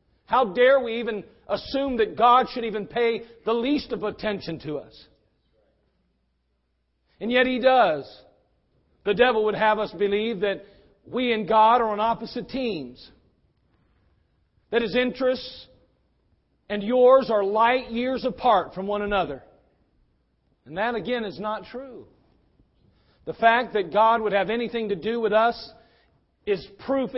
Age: 40-59